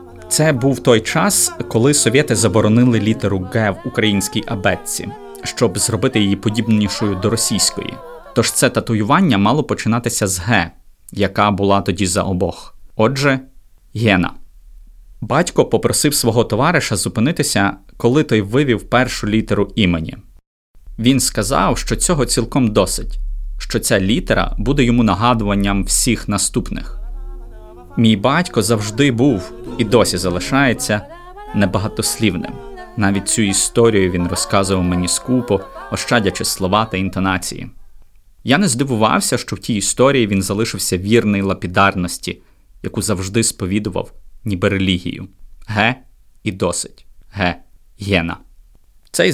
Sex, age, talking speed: male, 20-39, 120 wpm